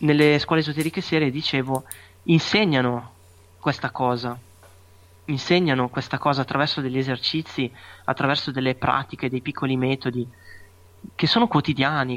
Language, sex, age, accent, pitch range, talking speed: Italian, male, 20-39, native, 120-145 Hz, 115 wpm